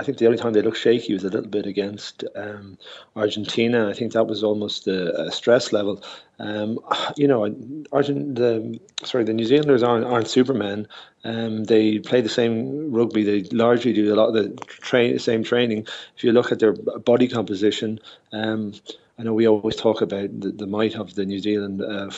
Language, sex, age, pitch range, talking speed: English, male, 30-49, 105-120 Hz, 200 wpm